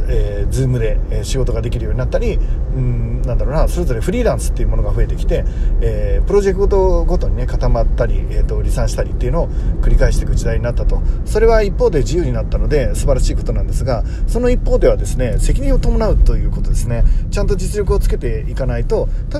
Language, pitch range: Japanese, 110-145 Hz